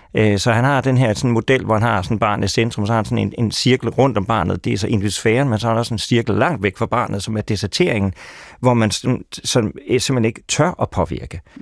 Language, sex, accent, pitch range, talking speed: Danish, male, native, 100-125 Hz, 260 wpm